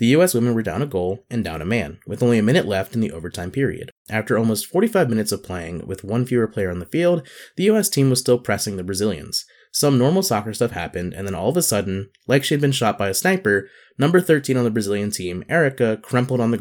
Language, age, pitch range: English, 20-39, 100-140 Hz